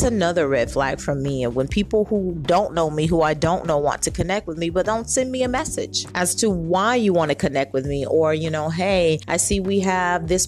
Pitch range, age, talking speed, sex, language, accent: 160-205 Hz, 30-49, 260 wpm, female, English, American